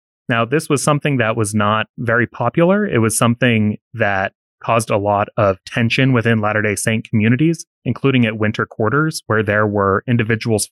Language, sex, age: English, male, 30-49